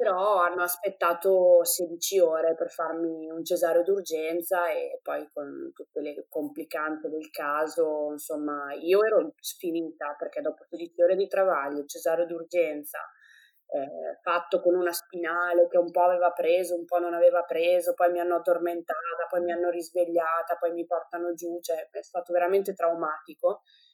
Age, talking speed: 20-39, 160 wpm